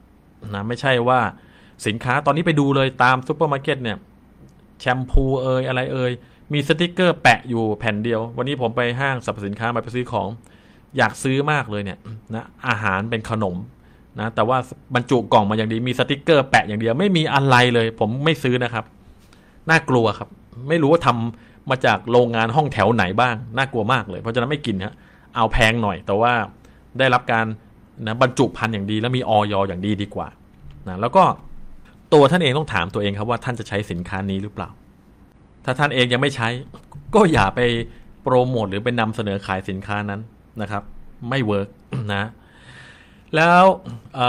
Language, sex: Thai, male